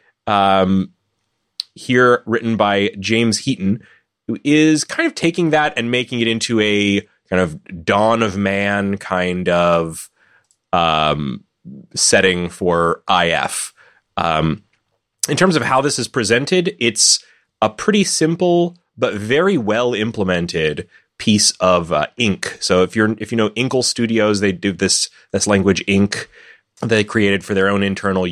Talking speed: 145 wpm